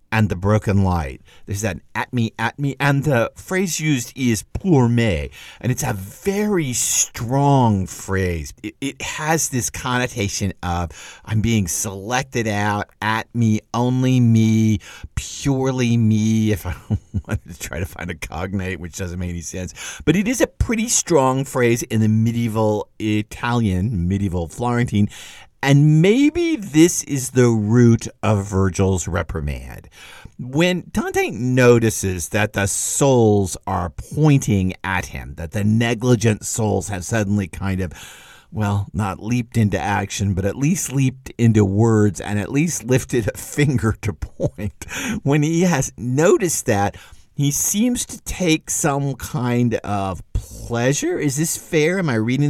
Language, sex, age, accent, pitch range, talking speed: English, male, 50-69, American, 100-135 Hz, 150 wpm